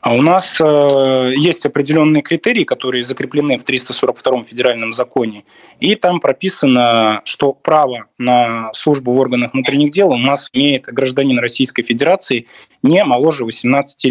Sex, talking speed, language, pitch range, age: male, 135 wpm, Russian, 115-140 Hz, 20-39